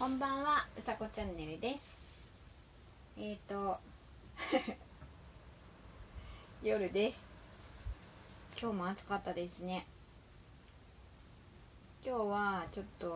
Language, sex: Japanese, female